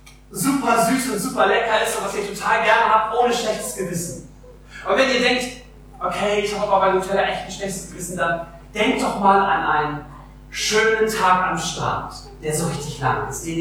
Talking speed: 200 wpm